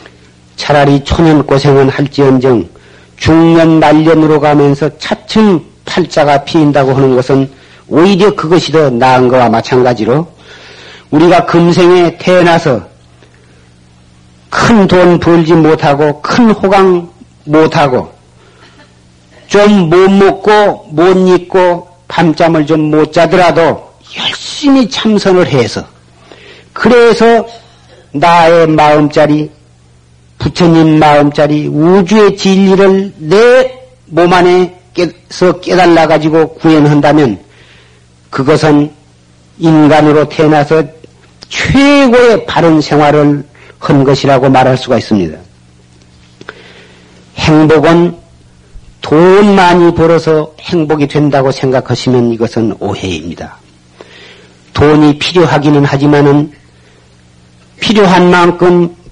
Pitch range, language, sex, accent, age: 120-175 Hz, Korean, male, native, 40-59